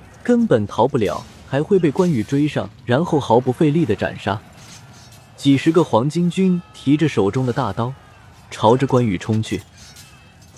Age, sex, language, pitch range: 20-39, male, Chinese, 110-165 Hz